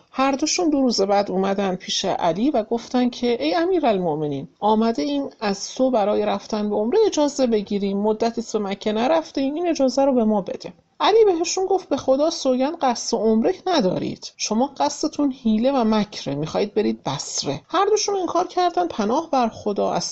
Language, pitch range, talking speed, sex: English, 195-295 Hz, 175 wpm, male